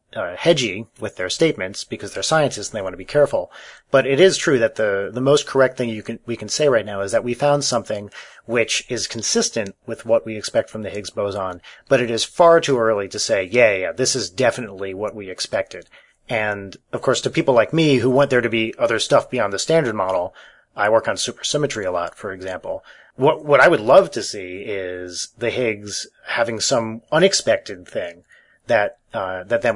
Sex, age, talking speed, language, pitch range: male, 30-49, 215 wpm, English, 100-130 Hz